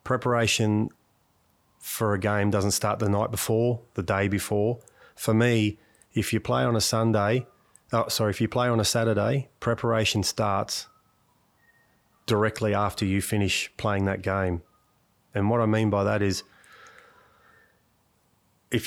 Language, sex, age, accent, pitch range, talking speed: English, male, 30-49, Australian, 100-110 Hz, 145 wpm